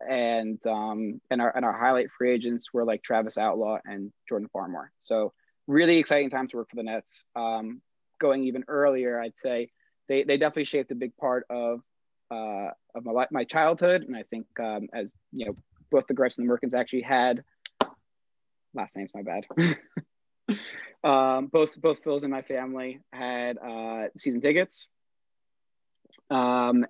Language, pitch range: English, 115-140 Hz